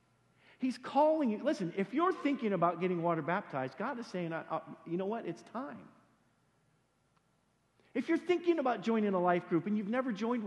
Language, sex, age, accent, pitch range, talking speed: English, male, 50-69, American, 160-245 Hz, 185 wpm